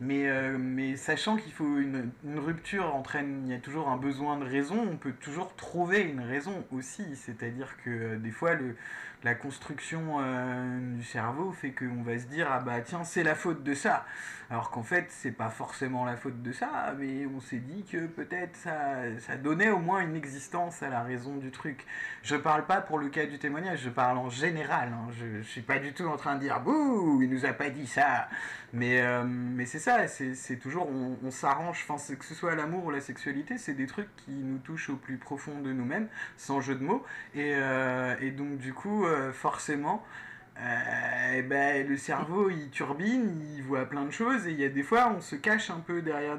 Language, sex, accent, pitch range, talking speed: French, male, French, 130-170 Hz, 225 wpm